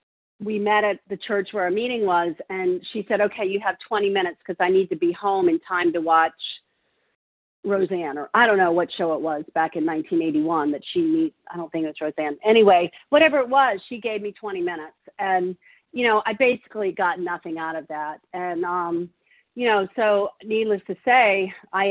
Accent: American